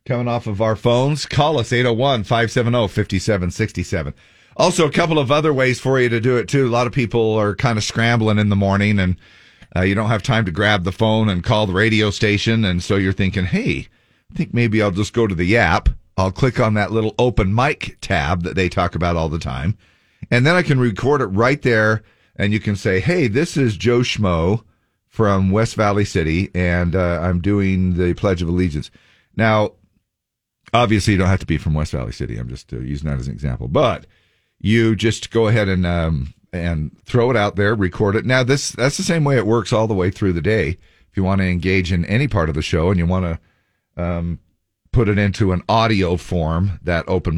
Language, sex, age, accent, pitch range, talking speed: English, male, 40-59, American, 90-120 Hz, 225 wpm